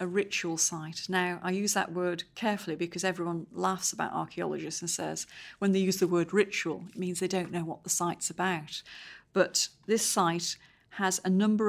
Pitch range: 170-195 Hz